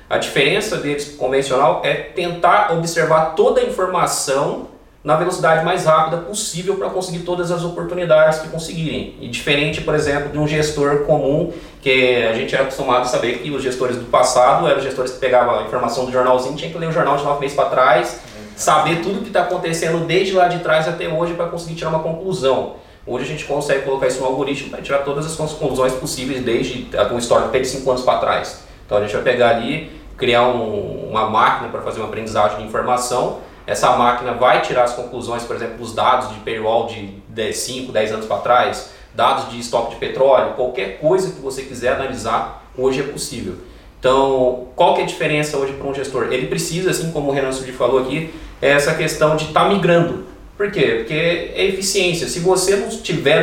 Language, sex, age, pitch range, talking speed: Portuguese, male, 20-39, 130-170 Hz, 205 wpm